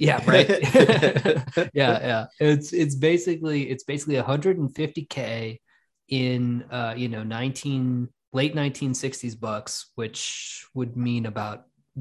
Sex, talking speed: male, 115 wpm